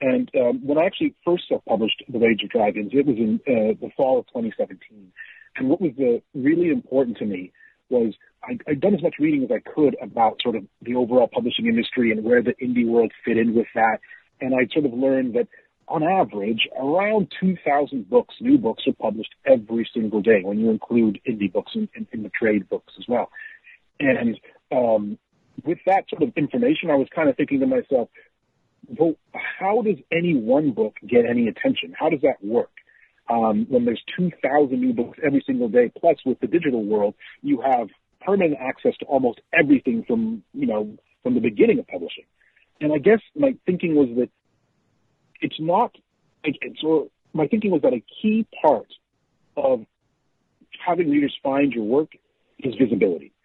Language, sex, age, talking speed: English, male, 40-59, 185 wpm